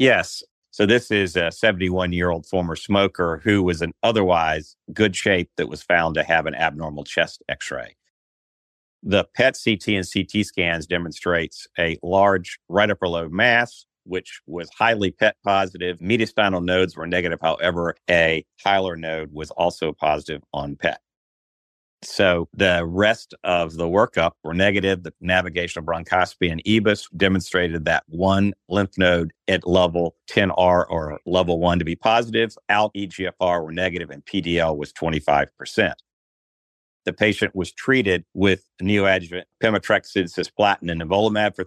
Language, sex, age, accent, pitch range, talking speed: English, male, 50-69, American, 85-100 Hz, 145 wpm